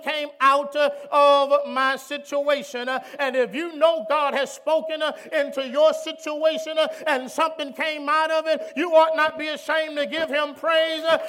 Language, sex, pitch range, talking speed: English, male, 220-315 Hz, 160 wpm